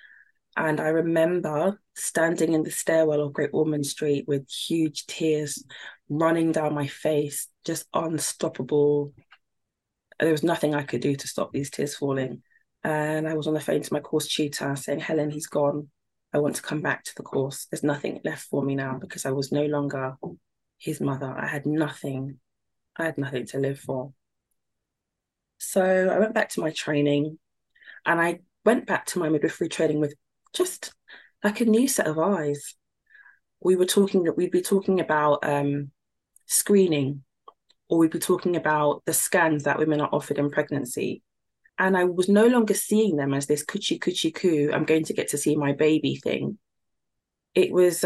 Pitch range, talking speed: 145-185 Hz, 180 wpm